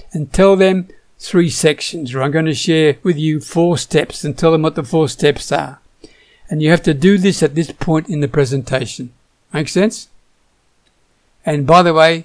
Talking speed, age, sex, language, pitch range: 195 wpm, 60-79, male, English, 145-180 Hz